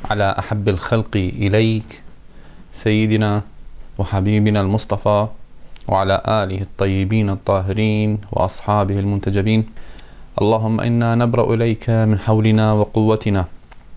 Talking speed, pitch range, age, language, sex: 85 wpm, 105-115 Hz, 20-39, Arabic, male